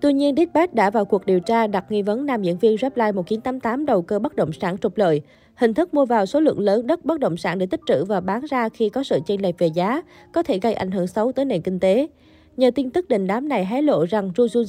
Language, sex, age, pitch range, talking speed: Vietnamese, female, 20-39, 195-255 Hz, 275 wpm